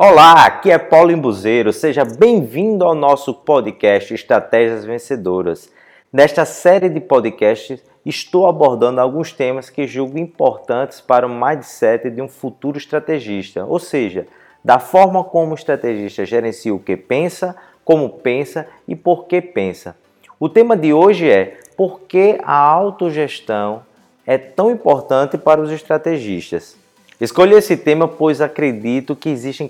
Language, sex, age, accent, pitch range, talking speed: Portuguese, male, 20-39, Brazilian, 115-180 Hz, 140 wpm